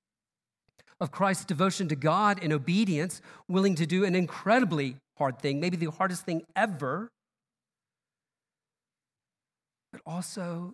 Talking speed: 115 wpm